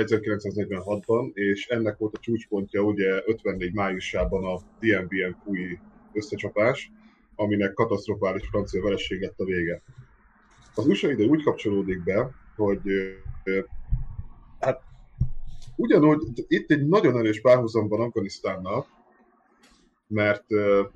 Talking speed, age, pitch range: 95 wpm, 20-39, 95-110 Hz